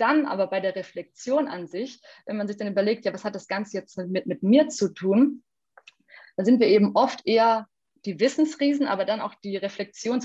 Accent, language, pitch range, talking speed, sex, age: German, German, 190-235 Hz, 210 wpm, female, 30-49